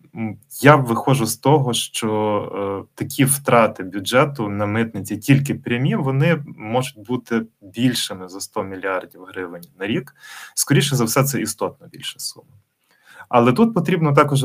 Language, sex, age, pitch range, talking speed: Ukrainian, male, 20-39, 105-130 Hz, 135 wpm